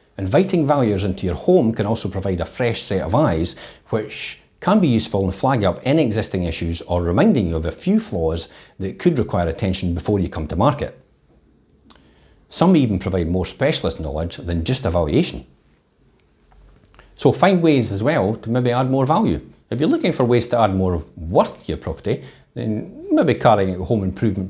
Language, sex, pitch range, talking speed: English, male, 90-125 Hz, 190 wpm